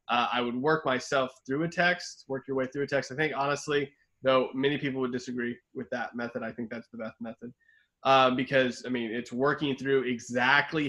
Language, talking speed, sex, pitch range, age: English, 215 wpm, male, 125-155 Hz, 20-39